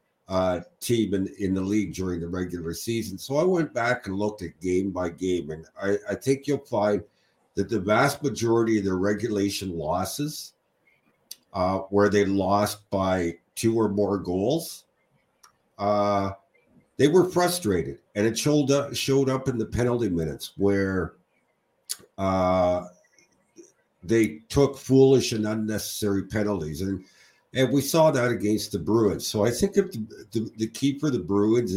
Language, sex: English, male